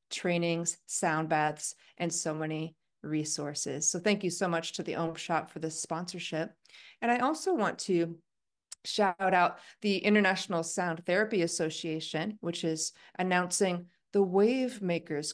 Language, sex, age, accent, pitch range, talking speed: English, female, 30-49, American, 160-195 Hz, 140 wpm